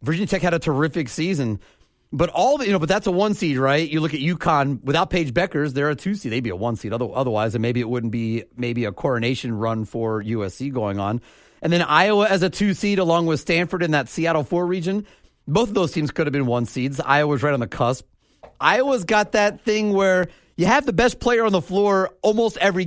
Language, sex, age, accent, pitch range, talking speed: English, male, 30-49, American, 130-180 Hz, 240 wpm